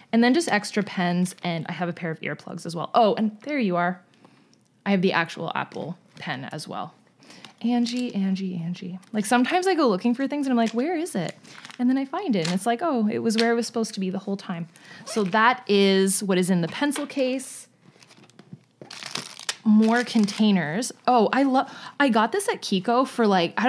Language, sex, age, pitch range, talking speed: English, female, 20-39, 180-230 Hz, 215 wpm